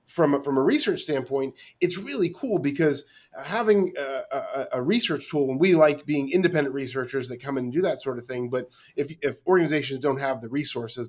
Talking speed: 210 wpm